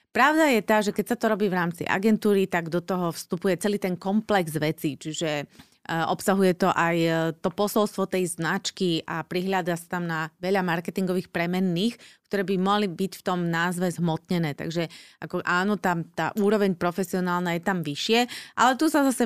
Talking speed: 180 wpm